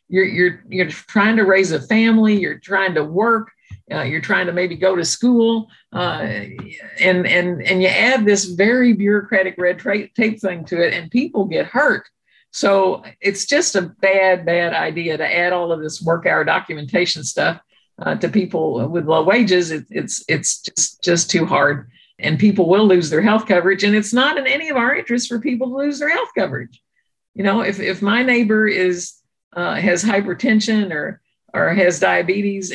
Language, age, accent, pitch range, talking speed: English, 50-69, American, 170-215 Hz, 190 wpm